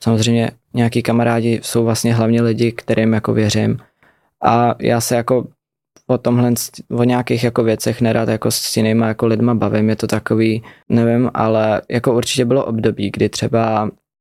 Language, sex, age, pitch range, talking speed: Czech, male, 20-39, 110-125 Hz, 160 wpm